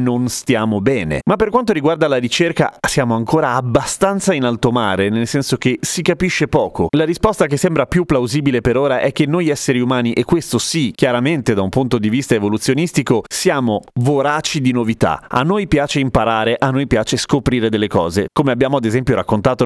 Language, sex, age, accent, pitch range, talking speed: Italian, male, 30-49, native, 115-145 Hz, 190 wpm